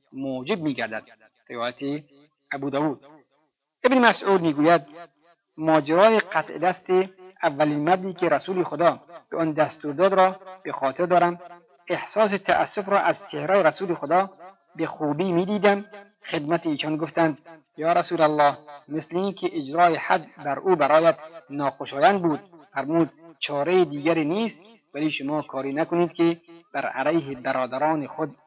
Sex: male